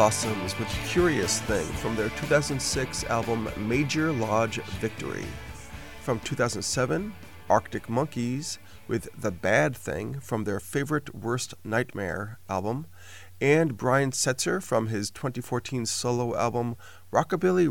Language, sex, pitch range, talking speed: English, male, 105-135 Hz, 115 wpm